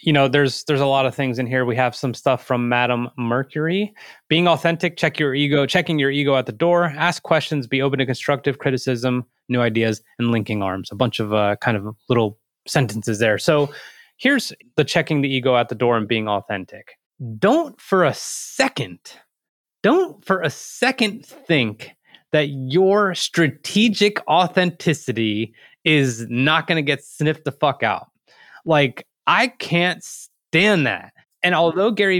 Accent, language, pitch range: American, English, 120-155 Hz